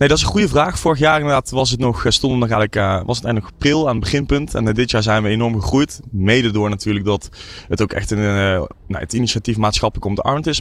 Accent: Dutch